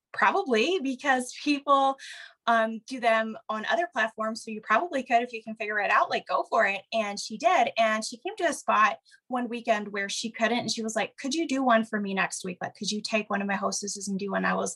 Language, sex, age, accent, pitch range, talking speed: English, female, 20-39, American, 210-265 Hz, 250 wpm